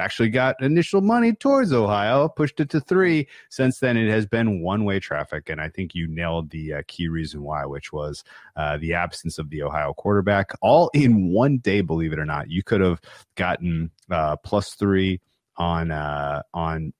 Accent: American